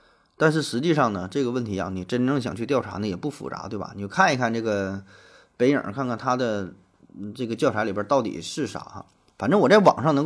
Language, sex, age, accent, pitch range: Chinese, male, 20-39, native, 110-145 Hz